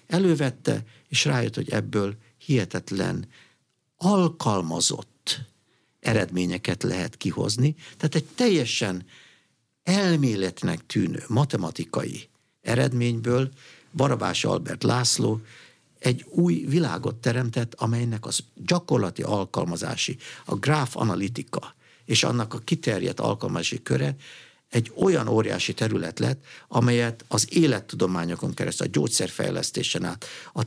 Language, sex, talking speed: Hungarian, male, 95 wpm